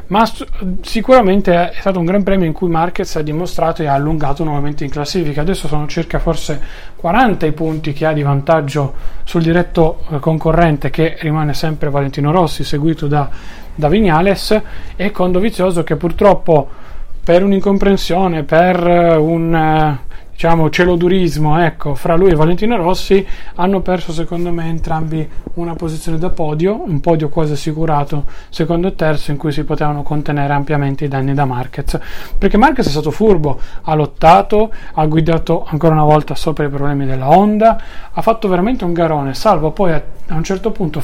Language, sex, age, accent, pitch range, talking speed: Italian, male, 30-49, native, 150-180 Hz, 165 wpm